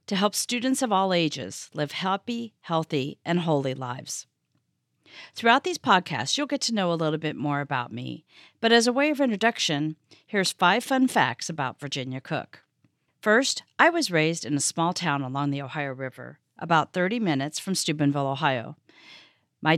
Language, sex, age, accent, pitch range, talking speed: English, female, 40-59, American, 145-195 Hz, 175 wpm